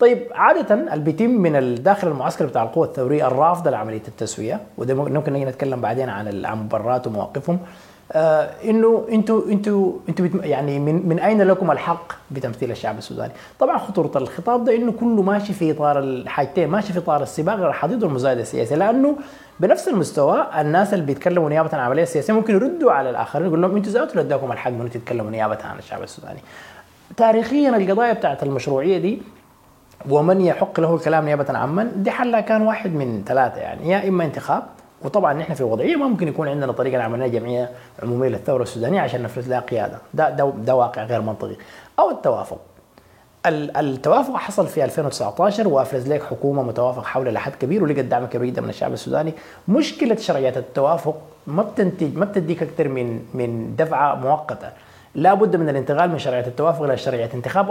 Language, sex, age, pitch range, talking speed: English, male, 30-49, 130-195 Hz, 165 wpm